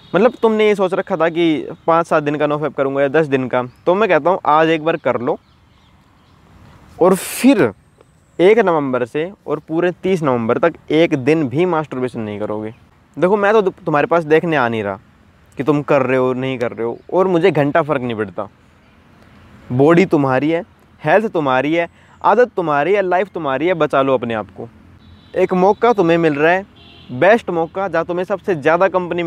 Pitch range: 130-195 Hz